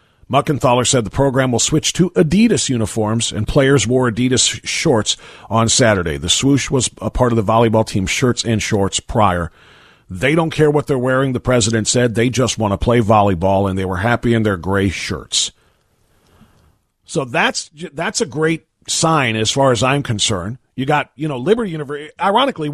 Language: English